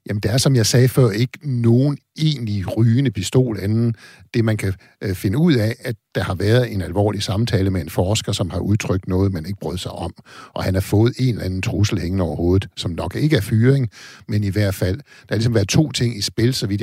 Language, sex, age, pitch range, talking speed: Danish, male, 50-69, 95-120 Hz, 240 wpm